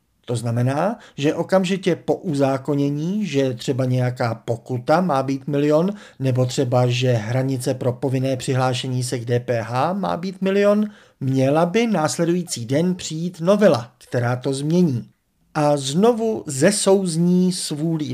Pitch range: 125-170 Hz